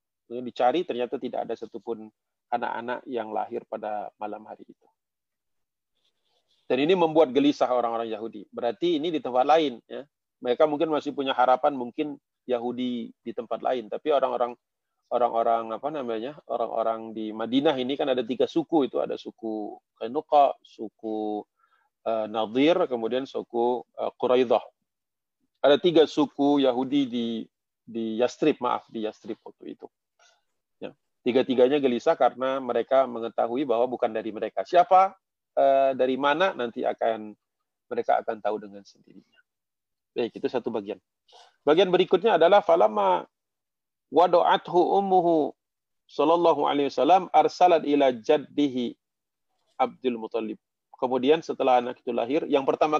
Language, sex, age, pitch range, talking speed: Indonesian, male, 40-59, 115-155 Hz, 130 wpm